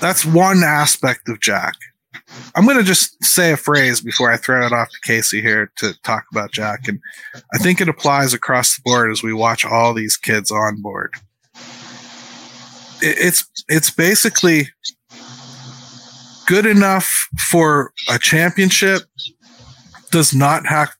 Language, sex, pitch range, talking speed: English, male, 120-160 Hz, 145 wpm